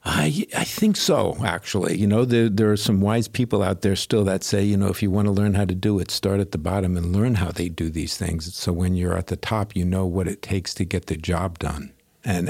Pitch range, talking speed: 90-105 Hz, 275 wpm